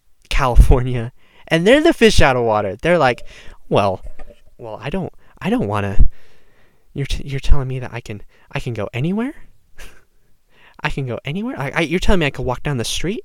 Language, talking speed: English, 200 wpm